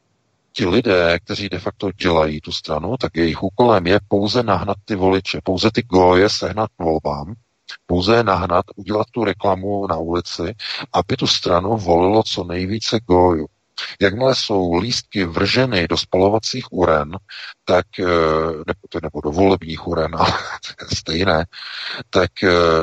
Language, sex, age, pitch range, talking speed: Czech, male, 50-69, 85-110 Hz, 140 wpm